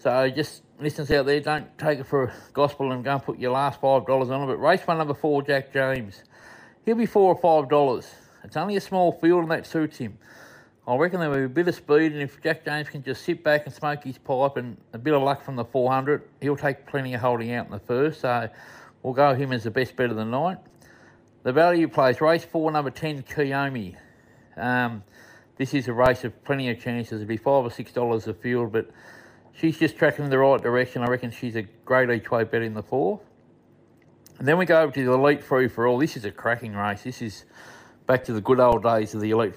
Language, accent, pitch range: English, Australian, 115-145 Hz